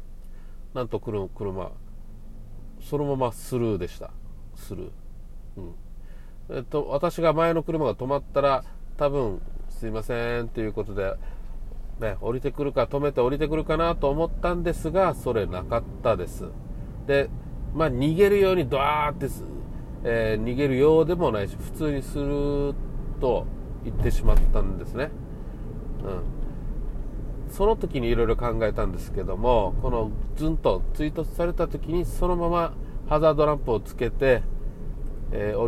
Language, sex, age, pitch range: Japanese, male, 40-59, 105-150 Hz